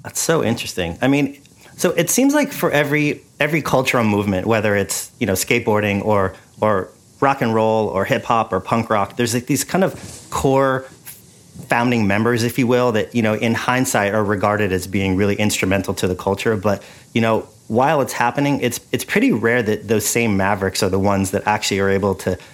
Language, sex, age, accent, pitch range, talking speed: English, male, 30-49, American, 100-125 Hz, 205 wpm